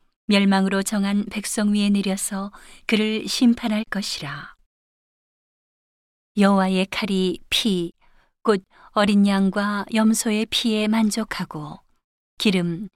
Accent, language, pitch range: native, Korean, 185-215 Hz